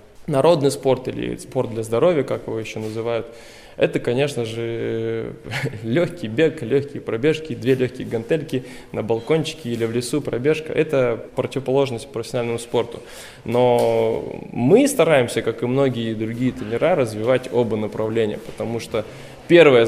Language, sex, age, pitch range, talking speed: Russian, male, 20-39, 115-135 Hz, 135 wpm